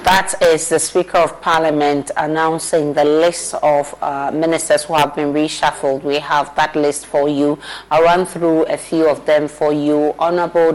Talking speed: 180 wpm